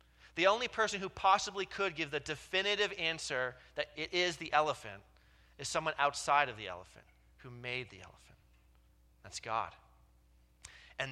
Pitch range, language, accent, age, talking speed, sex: 110-165 Hz, English, American, 30-49, 150 wpm, male